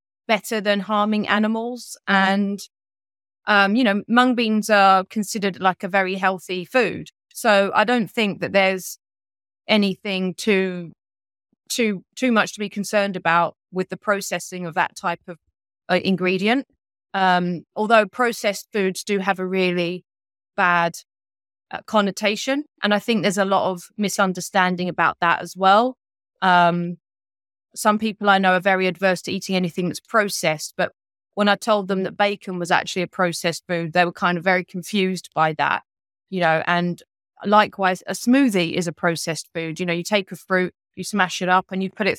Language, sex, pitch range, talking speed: English, female, 175-205 Hz, 170 wpm